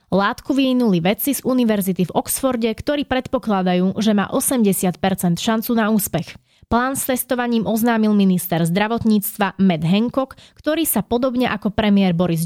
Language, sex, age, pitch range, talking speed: Slovak, female, 20-39, 190-245 Hz, 140 wpm